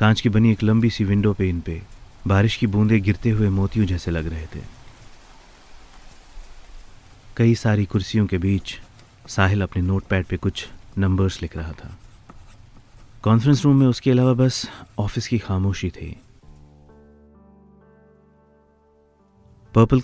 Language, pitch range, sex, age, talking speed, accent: Hindi, 90-110 Hz, male, 30-49, 130 wpm, native